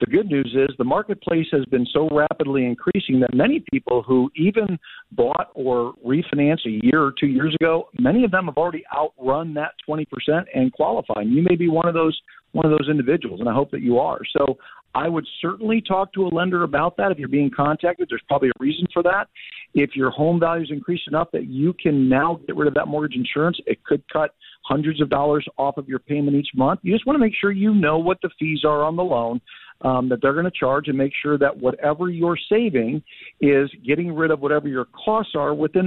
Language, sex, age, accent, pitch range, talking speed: English, male, 50-69, American, 130-170 Hz, 230 wpm